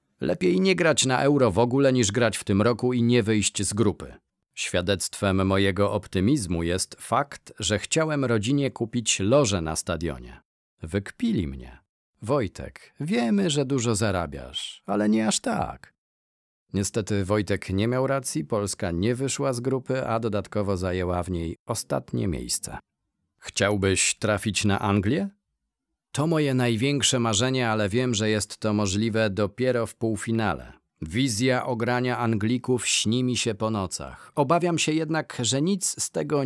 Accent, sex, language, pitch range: native, male, Polish, 95-130 Hz